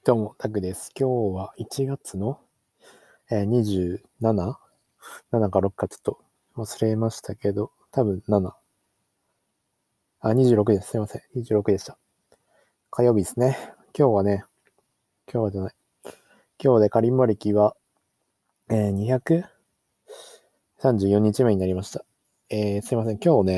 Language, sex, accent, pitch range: Japanese, male, native, 95-120 Hz